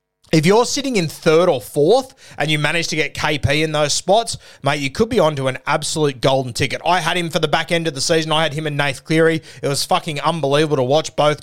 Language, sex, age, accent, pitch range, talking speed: English, male, 30-49, Australian, 135-165 Hz, 250 wpm